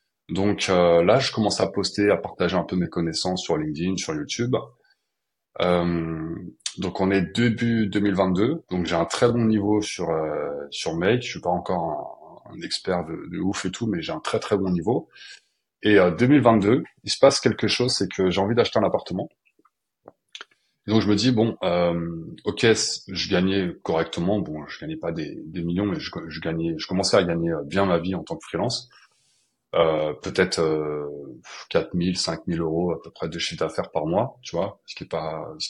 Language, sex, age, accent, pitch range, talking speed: French, male, 30-49, French, 85-105 Hz, 200 wpm